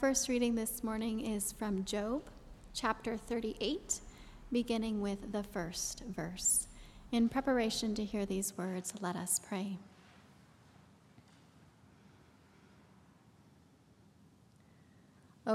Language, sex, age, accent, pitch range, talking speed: English, female, 30-49, American, 195-240 Hz, 95 wpm